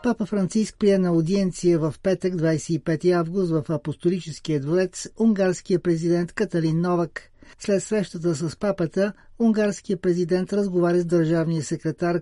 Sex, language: male, Bulgarian